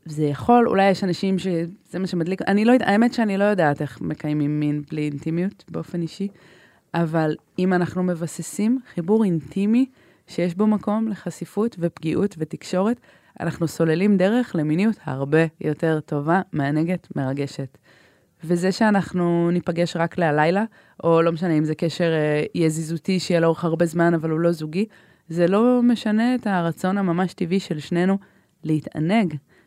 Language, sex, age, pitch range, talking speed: Hebrew, female, 20-39, 160-200 Hz, 150 wpm